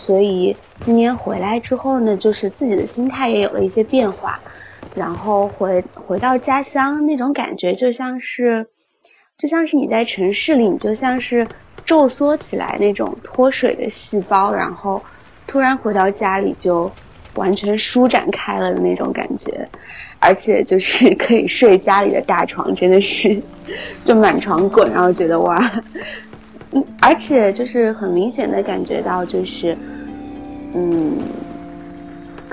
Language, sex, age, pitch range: Chinese, female, 20-39, 190-260 Hz